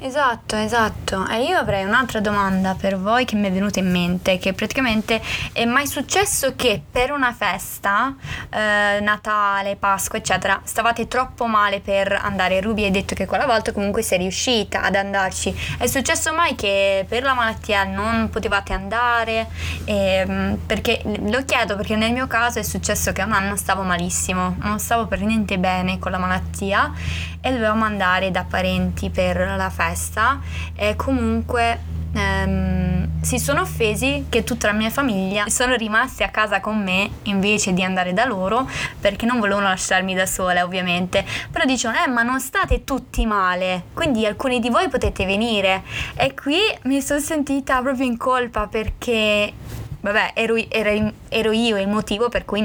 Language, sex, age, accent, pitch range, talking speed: Italian, female, 20-39, native, 185-230 Hz, 165 wpm